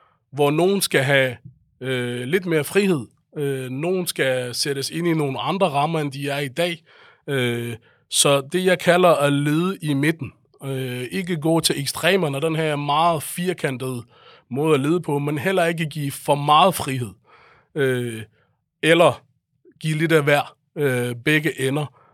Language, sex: Danish, male